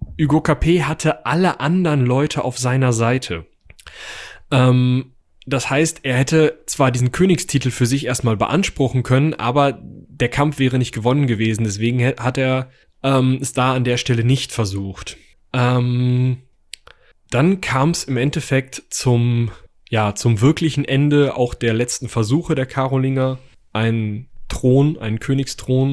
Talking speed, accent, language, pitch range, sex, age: 140 wpm, German, German, 120-145 Hz, male, 10-29